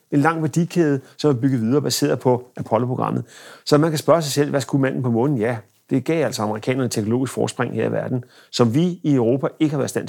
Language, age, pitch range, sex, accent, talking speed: Danish, 40-59, 115-145 Hz, male, native, 240 wpm